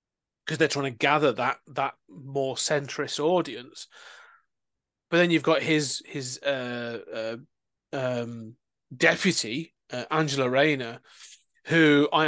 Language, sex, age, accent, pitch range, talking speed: English, male, 30-49, British, 125-155 Hz, 120 wpm